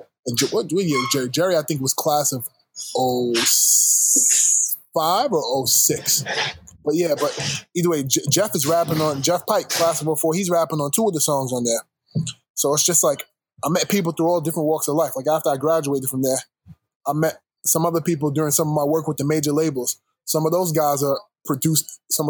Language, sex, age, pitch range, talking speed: English, male, 10-29, 140-165 Hz, 205 wpm